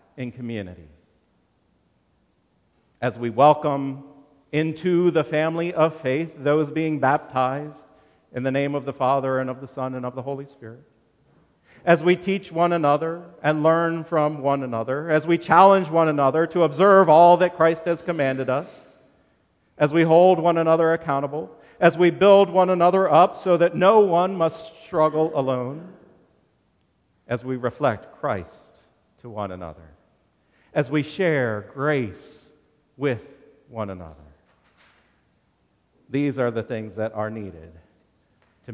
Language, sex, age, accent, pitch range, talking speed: English, male, 50-69, American, 120-165 Hz, 145 wpm